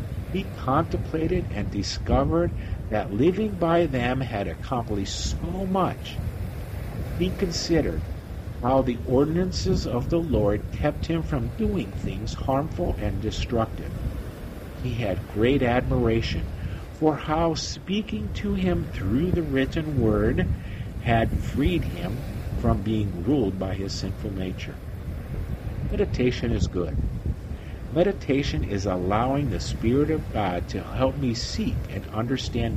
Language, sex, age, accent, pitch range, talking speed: English, male, 50-69, American, 95-135 Hz, 125 wpm